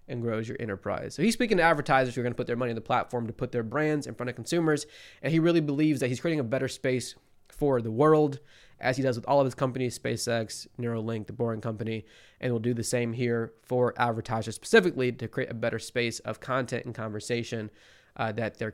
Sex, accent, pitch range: male, American, 110-130 Hz